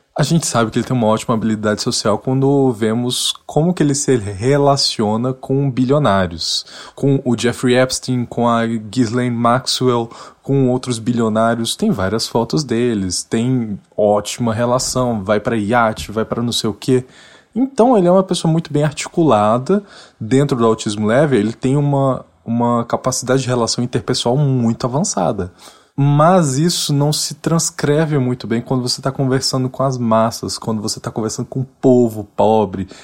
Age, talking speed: 20-39, 165 wpm